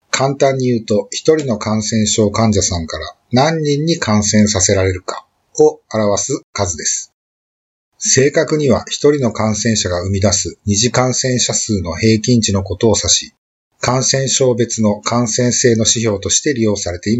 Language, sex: Japanese, male